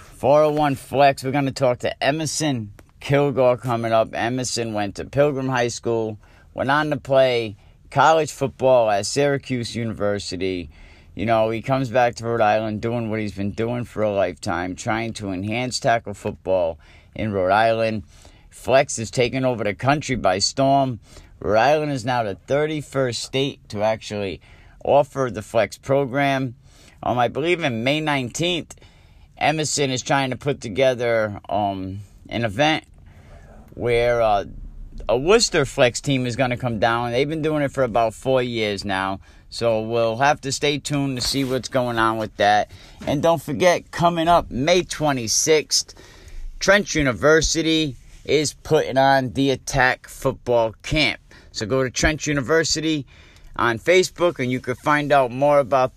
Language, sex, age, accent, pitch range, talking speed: English, male, 50-69, American, 105-140 Hz, 160 wpm